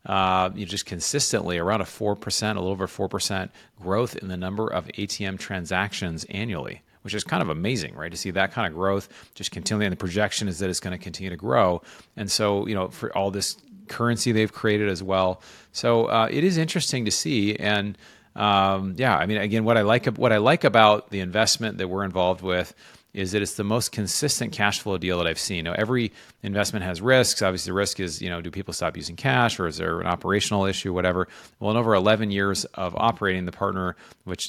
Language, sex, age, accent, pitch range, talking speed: English, male, 30-49, American, 90-105 Hz, 220 wpm